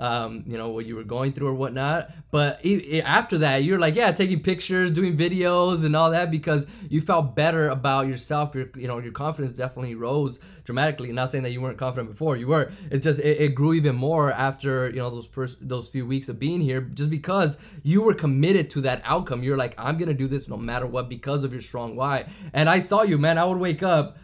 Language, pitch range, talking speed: English, 130-165 Hz, 235 wpm